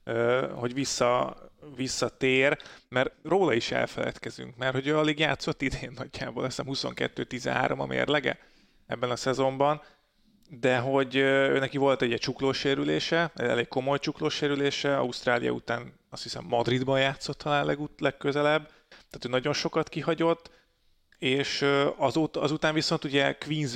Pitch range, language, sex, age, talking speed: 125-145 Hz, Hungarian, male, 30-49, 140 wpm